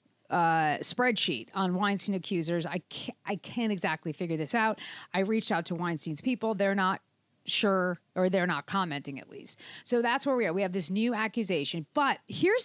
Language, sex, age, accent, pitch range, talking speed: English, female, 40-59, American, 180-245 Hz, 190 wpm